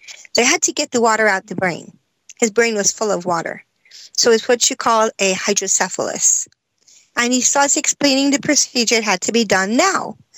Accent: American